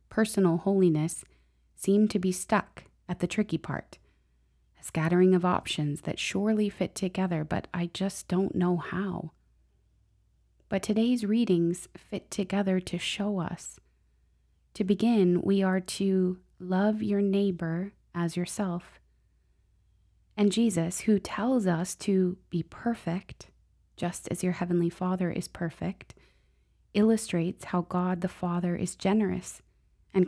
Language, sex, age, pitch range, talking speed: English, female, 20-39, 170-205 Hz, 130 wpm